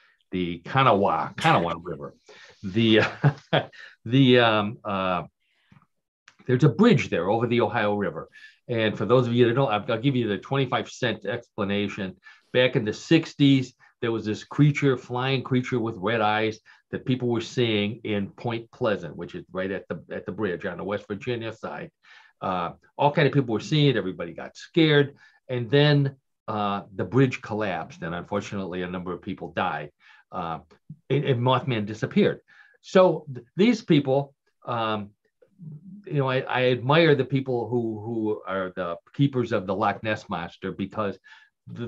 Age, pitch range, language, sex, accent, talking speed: 40-59, 105-135 Hz, English, male, American, 165 wpm